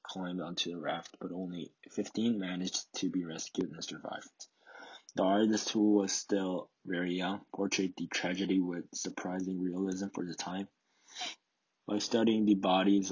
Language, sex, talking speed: English, male, 150 wpm